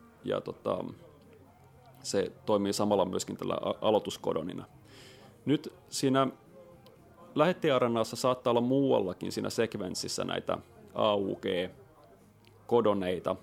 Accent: native